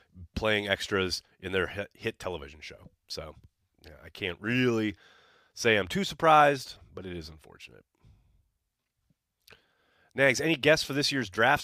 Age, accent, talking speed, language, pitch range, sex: 30-49, American, 135 wpm, English, 85-115 Hz, male